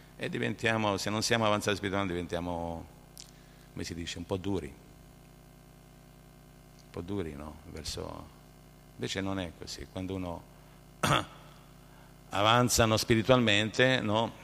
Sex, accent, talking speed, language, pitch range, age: male, native, 115 wpm, Italian, 85-130 Hz, 50-69